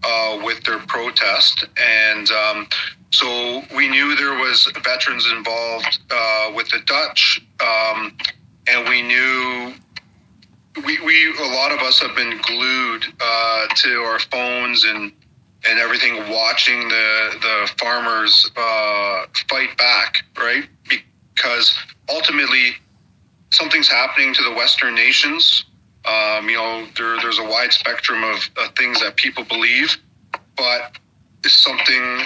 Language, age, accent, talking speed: Dutch, 40-59, American, 130 wpm